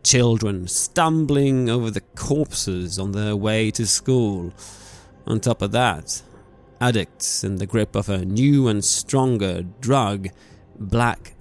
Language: English